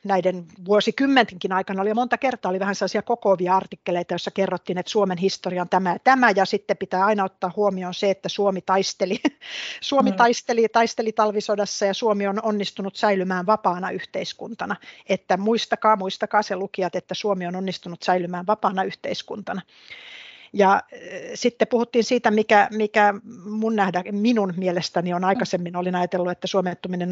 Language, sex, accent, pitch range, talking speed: Finnish, female, native, 185-215 Hz, 150 wpm